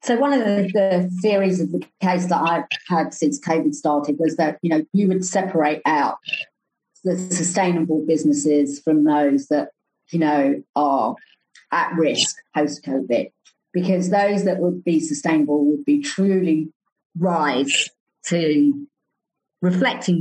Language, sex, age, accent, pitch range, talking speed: English, female, 40-59, British, 150-200 Hz, 135 wpm